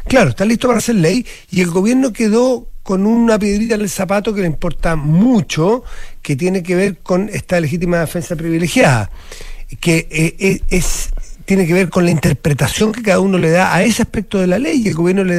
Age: 40-59